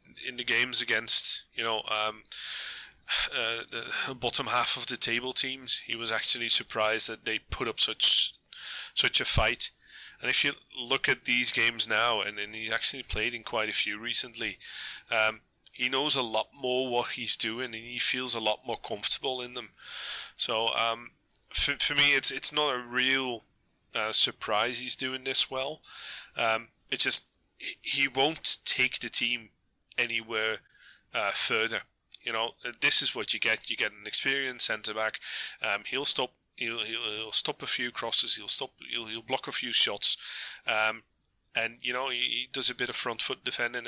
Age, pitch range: 30-49, 110-125 Hz